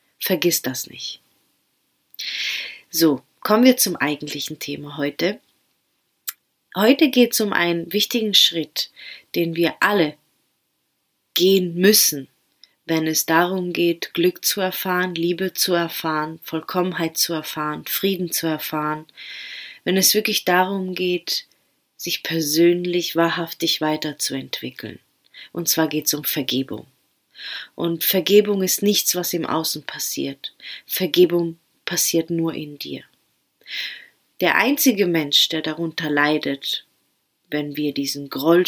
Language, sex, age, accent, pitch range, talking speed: German, female, 30-49, German, 150-180 Hz, 120 wpm